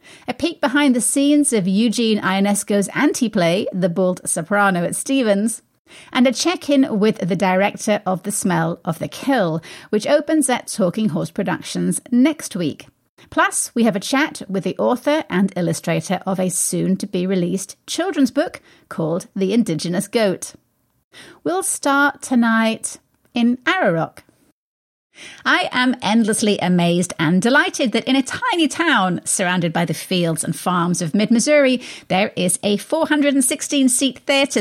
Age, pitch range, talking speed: 30-49, 185-275 Hz, 140 wpm